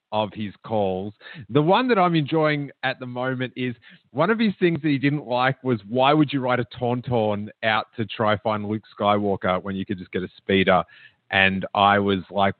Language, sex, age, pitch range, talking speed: English, male, 30-49, 110-155 Hz, 210 wpm